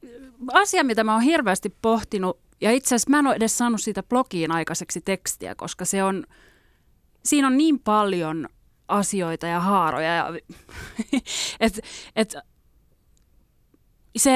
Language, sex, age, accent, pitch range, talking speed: Finnish, female, 30-49, native, 180-235 Hz, 135 wpm